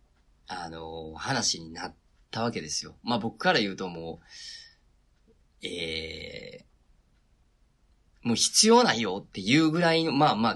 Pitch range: 85-145 Hz